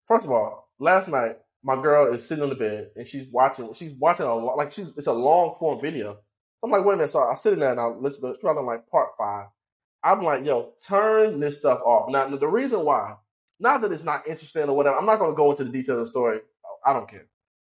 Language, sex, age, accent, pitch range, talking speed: English, male, 20-39, American, 130-205 Hz, 265 wpm